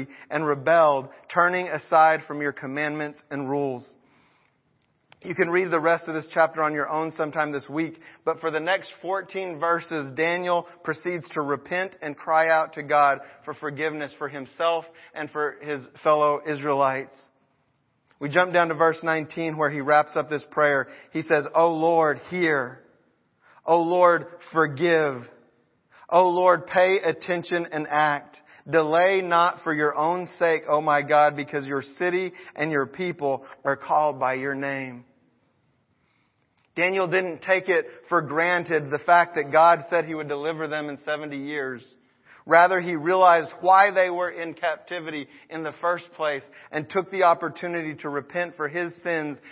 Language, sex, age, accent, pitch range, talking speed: English, male, 40-59, American, 145-175 Hz, 160 wpm